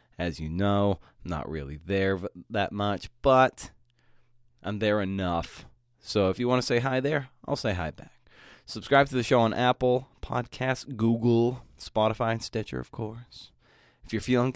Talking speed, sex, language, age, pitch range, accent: 170 wpm, male, English, 20-39, 100-125 Hz, American